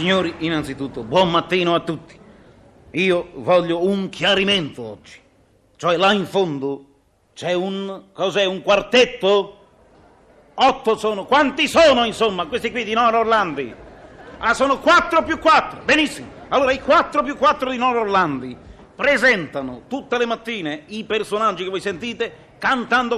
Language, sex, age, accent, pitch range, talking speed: Italian, male, 40-59, native, 180-265 Hz, 140 wpm